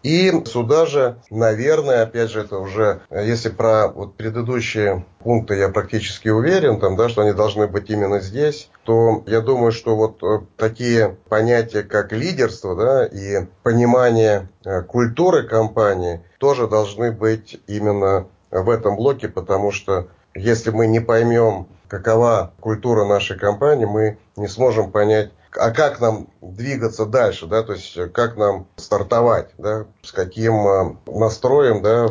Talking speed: 140 wpm